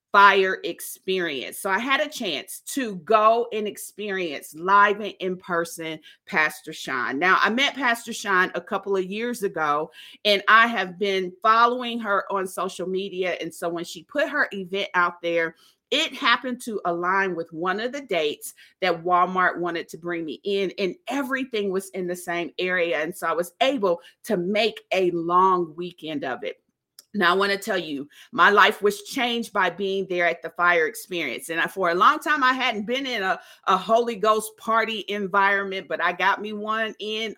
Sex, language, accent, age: female, English, American, 40-59